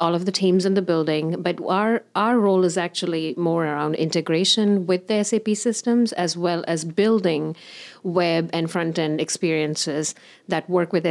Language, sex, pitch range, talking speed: English, female, 155-190 Hz, 165 wpm